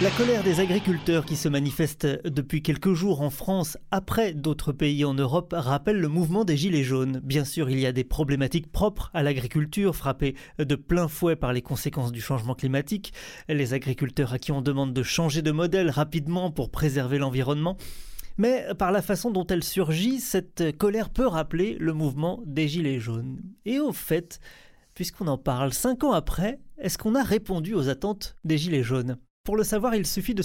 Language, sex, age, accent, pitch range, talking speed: French, male, 30-49, French, 145-190 Hz, 190 wpm